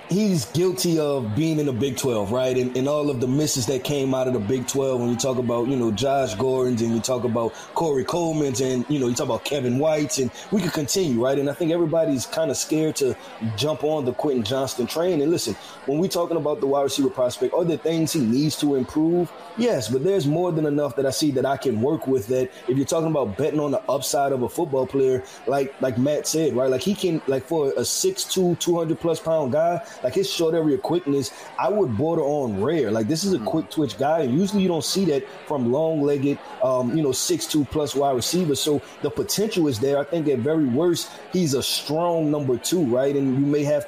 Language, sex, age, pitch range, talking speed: English, male, 20-39, 130-160 Hz, 240 wpm